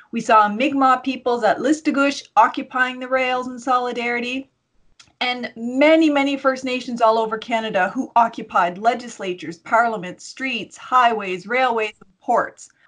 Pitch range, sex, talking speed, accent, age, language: 220-275 Hz, female, 130 wpm, American, 30-49, English